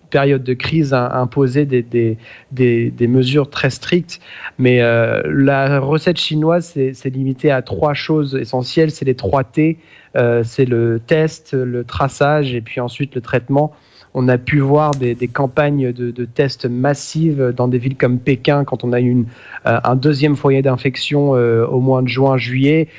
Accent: French